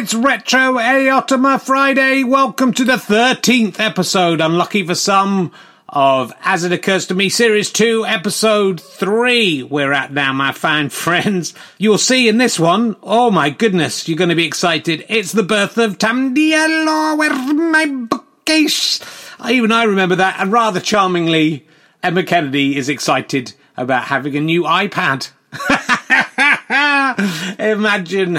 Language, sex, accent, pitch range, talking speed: English, male, British, 150-215 Hz, 145 wpm